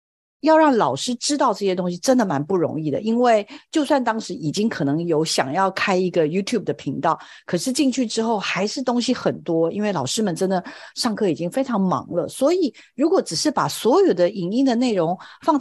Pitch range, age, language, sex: 175-260 Hz, 50-69, Chinese, female